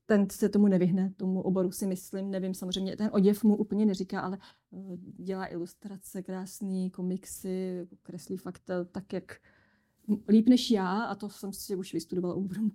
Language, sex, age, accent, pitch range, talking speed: Czech, female, 30-49, native, 185-205 Hz, 155 wpm